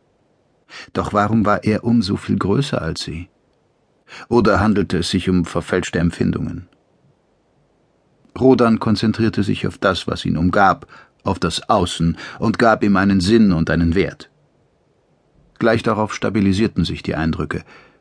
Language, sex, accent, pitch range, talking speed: German, male, German, 90-115 Hz, 140 wpm